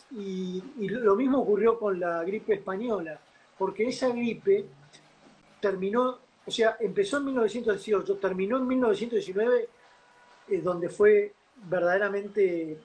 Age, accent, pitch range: 40-59, Argentinian, 190-245 Hz